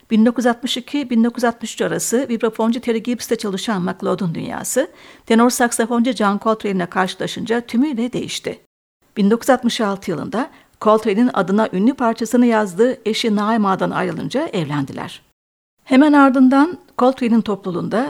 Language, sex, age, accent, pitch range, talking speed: Turkish, female, 60-79, native, 205-250 Hz, 95 wpm